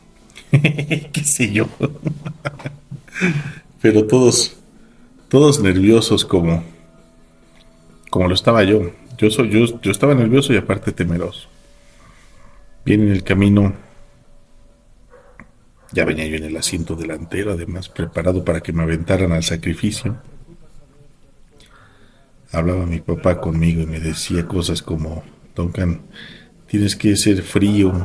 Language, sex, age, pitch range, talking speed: Spanish, male, 40-59, 85-120 Hz, 120 wpm